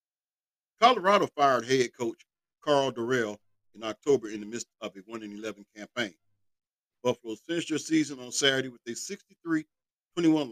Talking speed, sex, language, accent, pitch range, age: 145 wpm, male, English, American, 105-145 Hz, 50-69